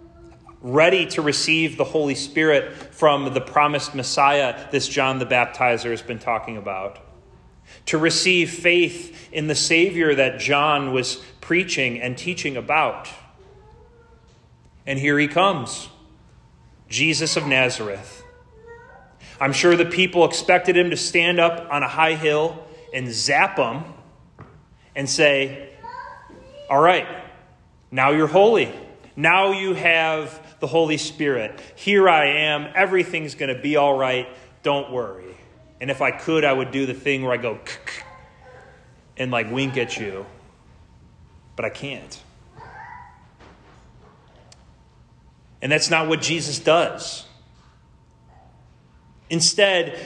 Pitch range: 130-170 Hz